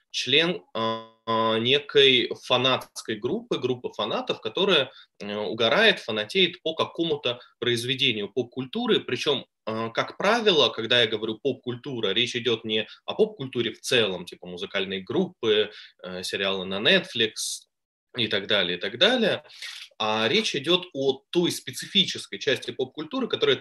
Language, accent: Russian, native